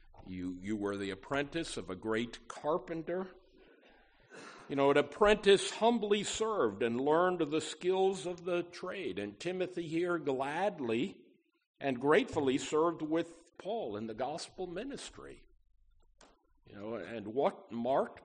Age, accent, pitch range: 50-69, American, 140-185 Hz